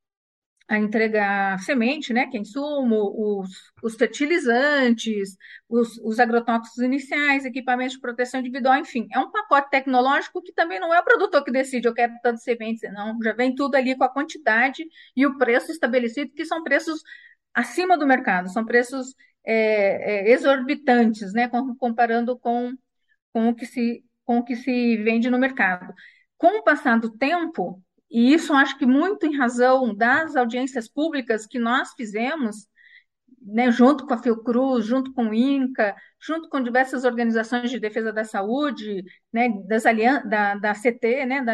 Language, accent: Portuguese, Brazilian